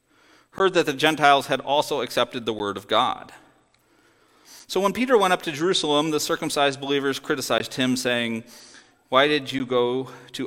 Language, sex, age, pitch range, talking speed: English, male, 40-59, 120-150 Hz, 165 wpm